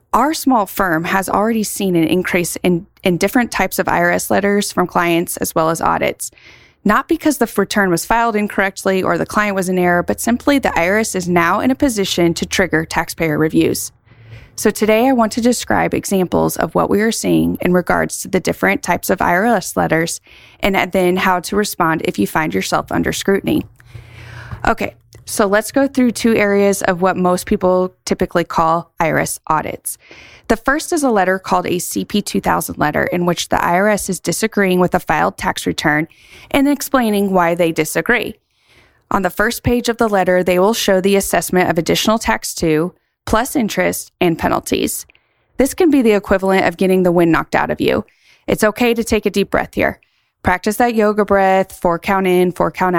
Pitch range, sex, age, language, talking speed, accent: 170-215 Hz, female, 20-39, English, 190 wpm, American